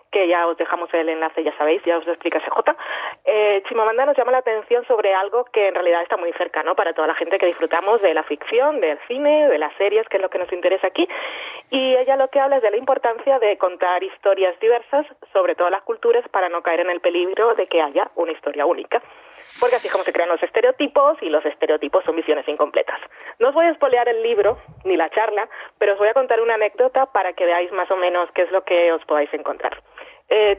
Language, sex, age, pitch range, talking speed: Spanish, female, 30-49, 175-270 Hz, 240 wpm